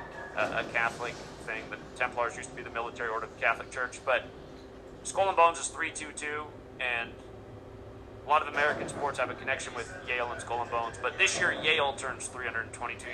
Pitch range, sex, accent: 120-140 Hz, male, American